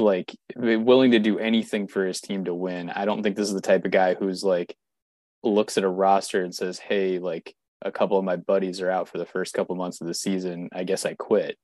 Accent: American